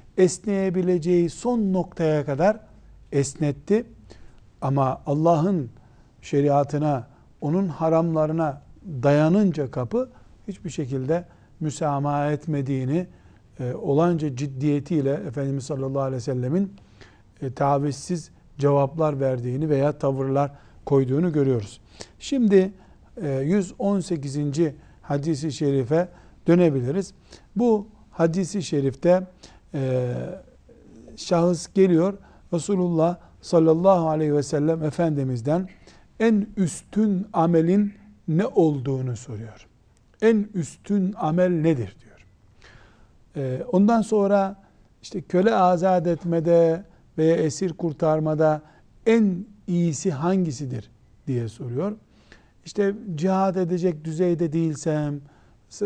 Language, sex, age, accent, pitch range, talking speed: Turkish, male, 60-79, native, 140-180 Hz, 85 wpm